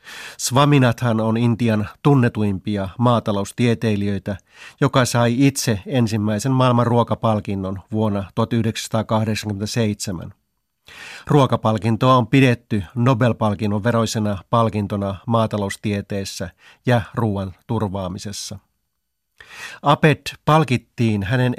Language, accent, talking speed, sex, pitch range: Finnish, native, 70 wpm, male, 105-125 Hz